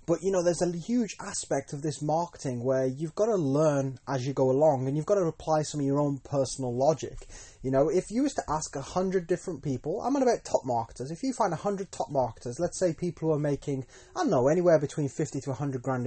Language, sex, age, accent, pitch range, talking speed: English, male, 20-39, British, 130-180 Hz, 255 wpm